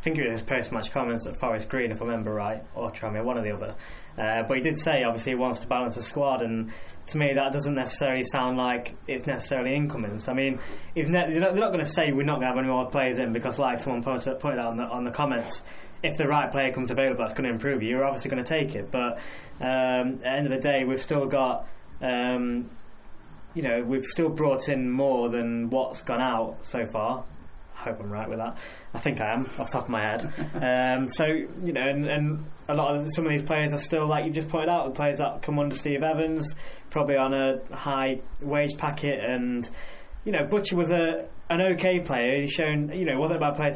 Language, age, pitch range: English, 10-29, 120-145 Hz